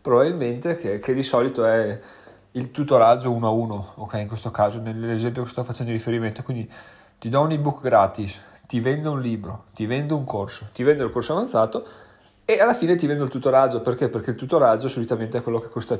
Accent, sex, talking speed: native, male, 205 wpm